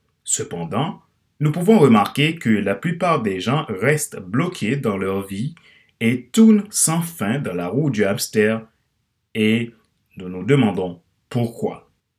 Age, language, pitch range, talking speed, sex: 30-49, French, 105-155 Hz, 140 wpm, male